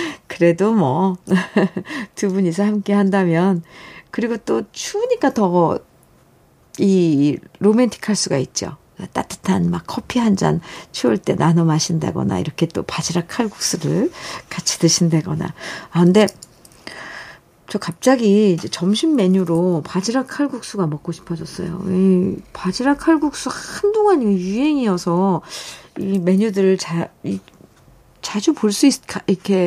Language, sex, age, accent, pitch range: Korean, female, 50-69, native, 170-230 Hz